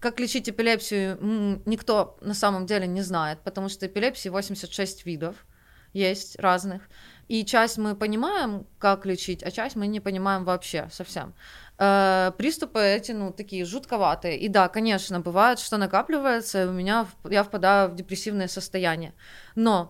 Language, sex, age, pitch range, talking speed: Russian, female, 20-39, 190-230 Hz, 140 wpm